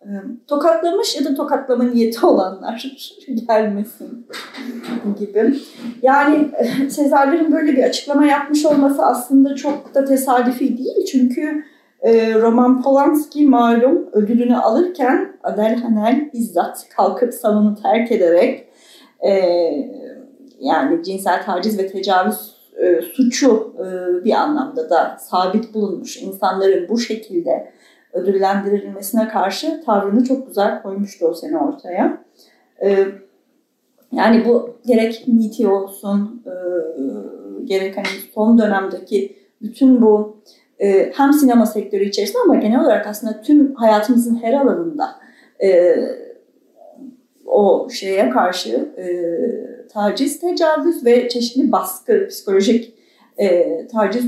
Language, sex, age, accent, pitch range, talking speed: Turkish, female, 40-59, native, 210-280 Hz, 105 wpm